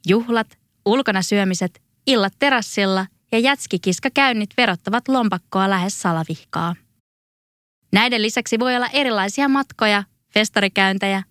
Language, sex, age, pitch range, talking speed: Finnish, female, 20-39, 185-255 Hz, 95 wpm